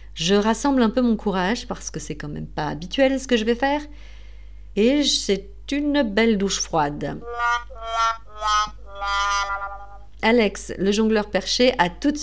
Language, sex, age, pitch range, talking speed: French, female, 40-59, 185-250 Hz, 150 wpm